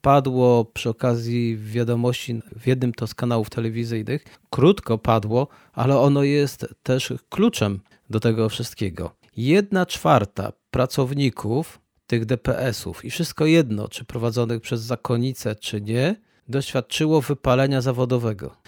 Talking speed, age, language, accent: 120 wpm, 40-59, Polish, native